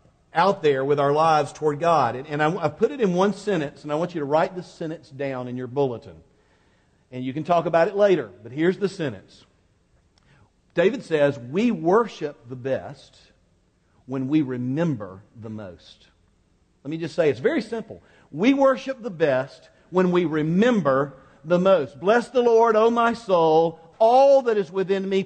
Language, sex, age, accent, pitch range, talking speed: English, male, 50-69, American, 145-220 Hz, 180 wpm